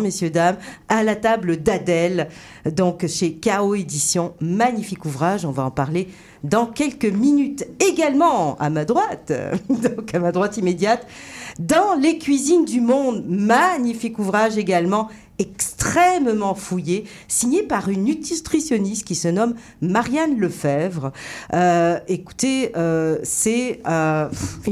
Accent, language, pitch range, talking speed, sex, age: French, French, 170-235 Hz, 125 wpm, female, 50-69